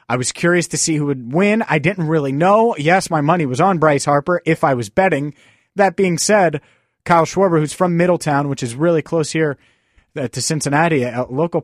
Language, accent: English, American